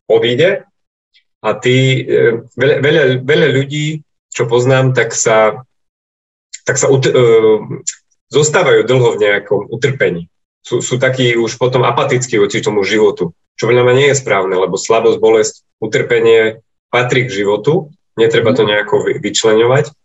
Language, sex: Slovak, male